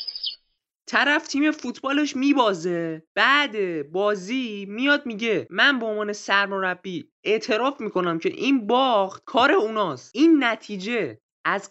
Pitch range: 195-275 Hz